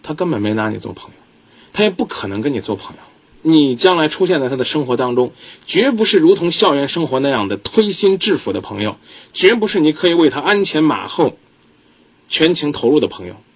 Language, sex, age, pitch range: Chinese, male, 20-39, 105-165 Hz